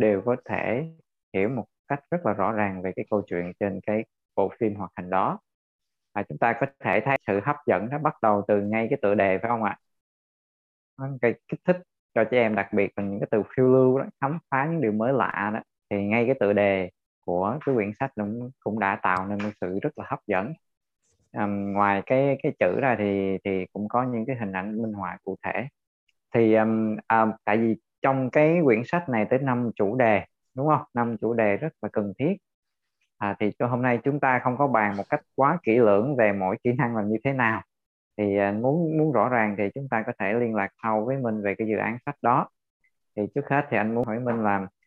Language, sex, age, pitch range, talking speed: Vietnamese, male, 20-39, 100-130 Hz, 235 wpm